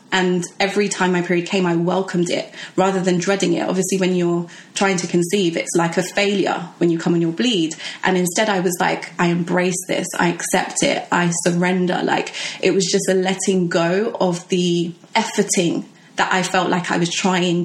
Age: 20-39